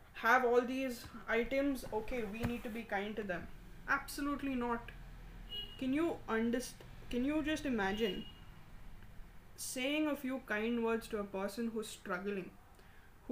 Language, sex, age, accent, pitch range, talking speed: English, female, 20-39, Indian, 220-260 Hz, 145 wpm